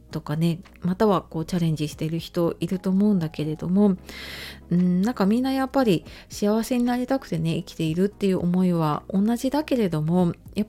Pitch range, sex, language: 160-205 Hz, female, Japanese